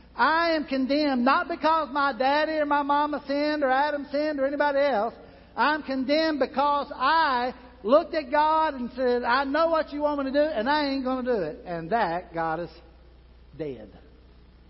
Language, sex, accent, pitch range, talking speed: English, male, American, 220-295 Hz, 190 wpm